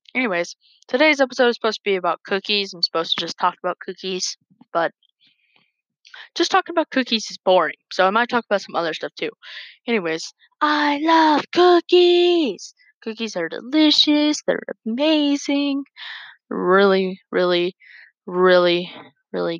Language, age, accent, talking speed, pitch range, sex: English, 20-39, American, 140 wpm, 175-265 Hz, female